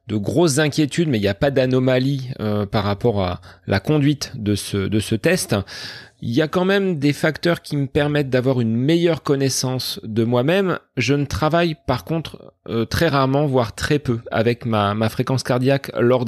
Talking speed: 195 wpm